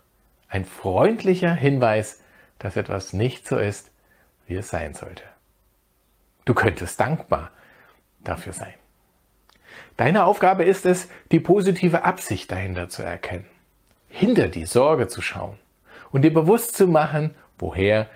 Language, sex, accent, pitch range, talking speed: German, male, German, 105-165 Hz, 125 wpm